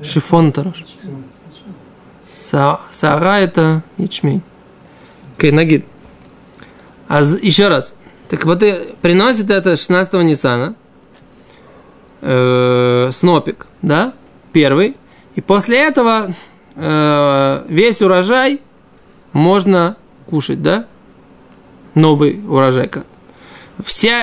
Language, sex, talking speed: Russian, male, 70 wpm